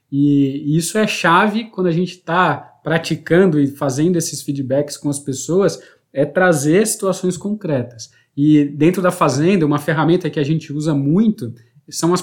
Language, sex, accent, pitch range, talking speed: Portuguese, male, Brazilian, 145-185 Hz, 160 wpm